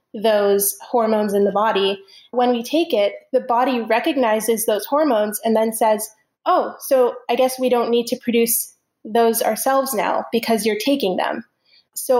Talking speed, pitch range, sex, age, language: 165 wpm, 205-240 Hz, female, 20-39, English